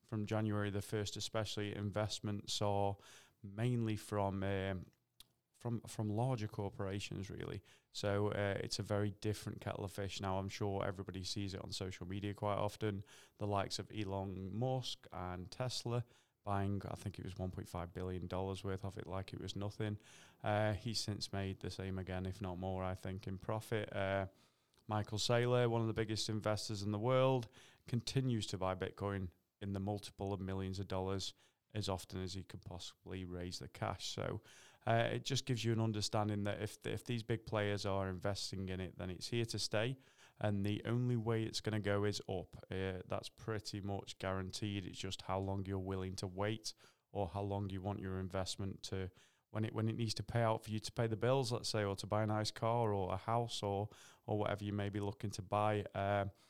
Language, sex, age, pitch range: English, male, 20-39, 95-110 Hz